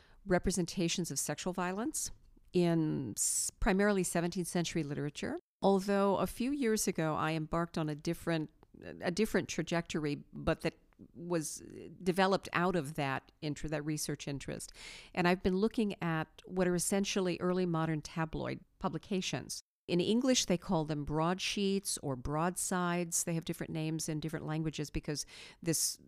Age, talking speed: 50-69, 145 wpm